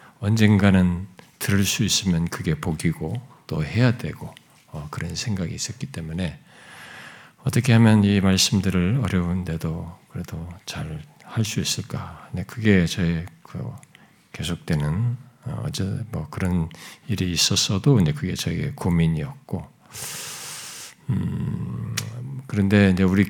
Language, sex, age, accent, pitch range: Korean, male, 50-69, native, 90-125 Hz